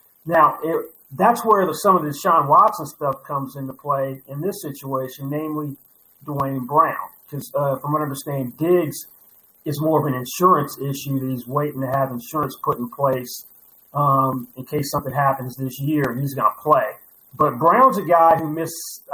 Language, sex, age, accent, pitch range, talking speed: English, male, 40-59, American, 140-165 Hz, 180 wpm